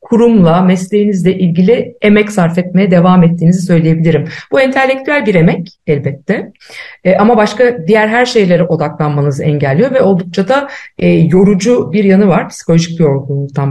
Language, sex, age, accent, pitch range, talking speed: Turkish, female, 50-69, native, 170-230 Hz, 145 wpm